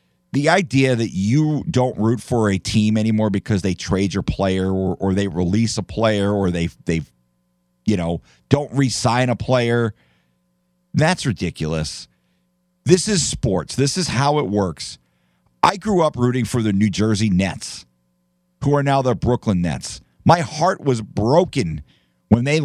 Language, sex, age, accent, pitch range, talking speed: English, male, 50-69, American, 90-135 Hz, 160 wpm